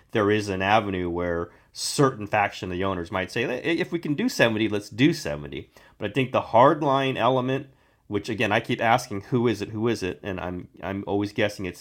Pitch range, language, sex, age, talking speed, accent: 95-125 Hz, English, male, 30-49, 225 wpm, American